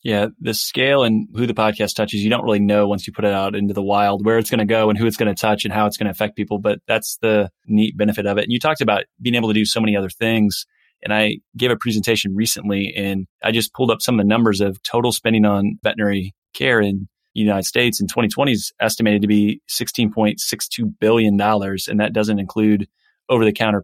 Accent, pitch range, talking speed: American, 105-115 Hz, 240 wpm